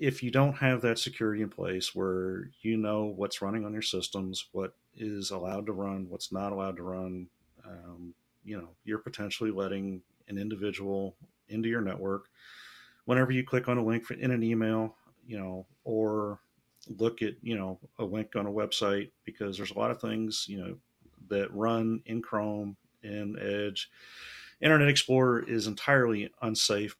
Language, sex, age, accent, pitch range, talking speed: English, male, 40-59, American, 95-110 Hz, 170 wpm